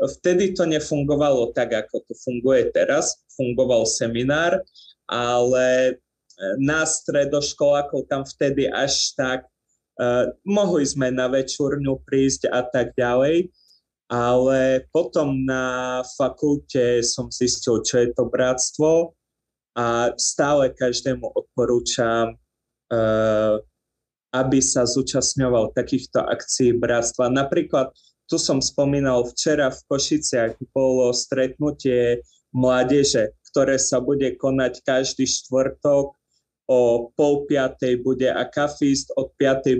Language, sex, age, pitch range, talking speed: Slovak, male, 20-39, 125-145 Hz, 110 wpm